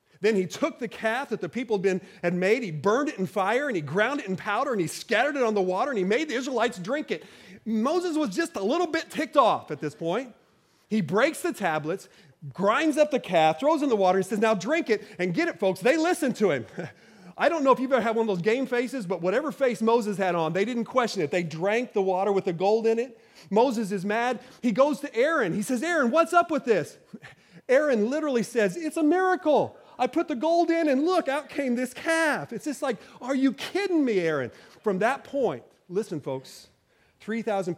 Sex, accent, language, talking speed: male, American, English, 240 wpm